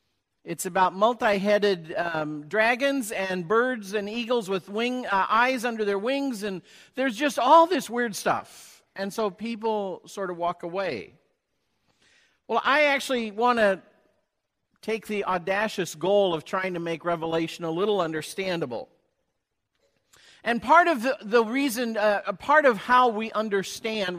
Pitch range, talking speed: 195-250 Hz, 150 wpm